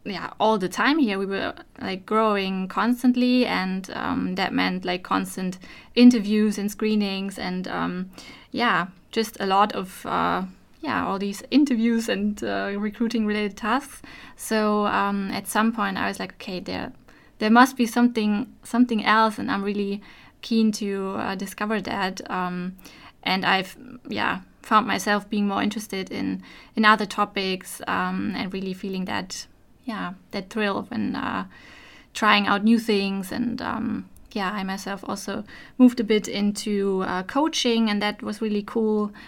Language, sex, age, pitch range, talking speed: German, female, 20-39, 195-230 Hz, 160 wpm